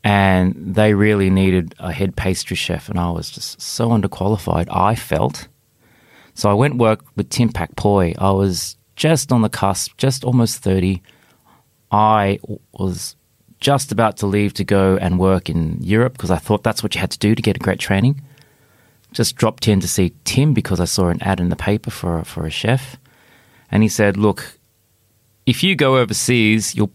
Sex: male